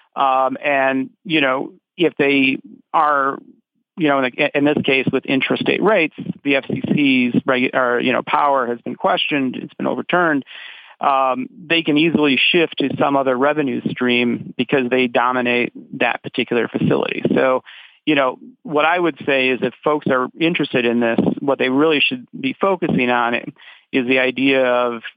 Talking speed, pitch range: 160 wpm, 125-150 Hz